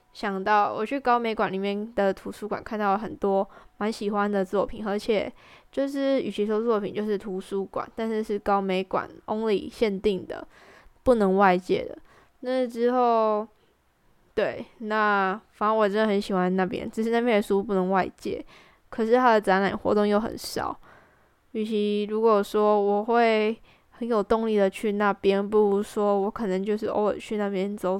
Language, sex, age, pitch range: English, female, 10-29, 195-220 Hz